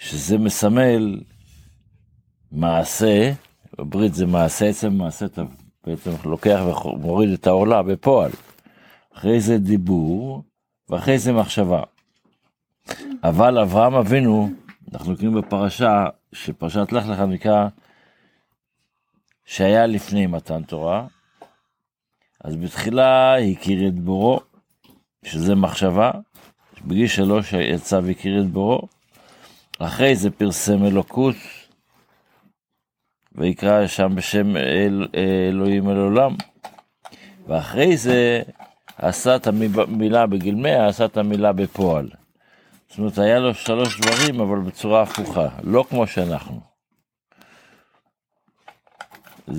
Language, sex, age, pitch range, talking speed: Hebrew, male, 60-79, 95-115 Hz, 100 wpm